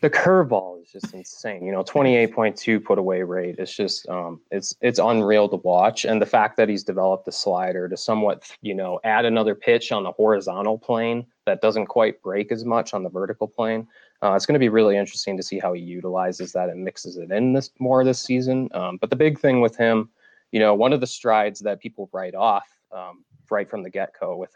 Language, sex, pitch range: English, male, 95-115 Hz